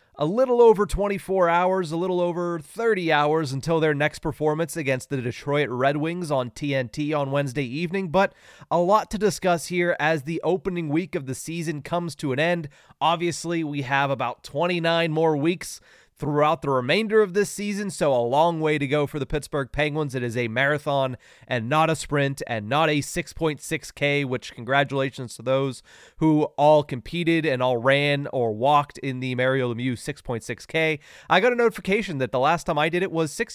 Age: 30-49